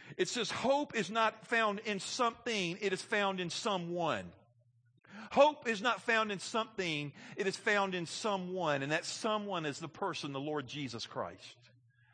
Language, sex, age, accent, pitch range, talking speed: English, male, 50-69, American, 155-240 Hz, 170 wpm